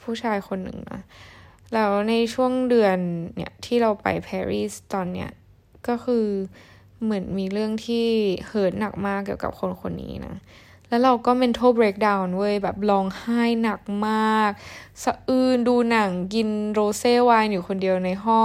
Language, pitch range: Thai, 185-230 Hz